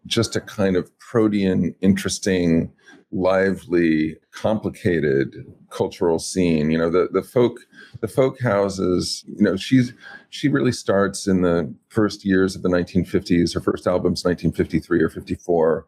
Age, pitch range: 40-59, 90-110 Hz